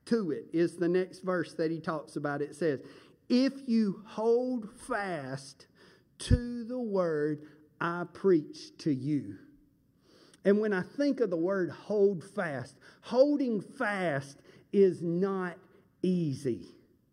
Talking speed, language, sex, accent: 130 wpm, English, male, American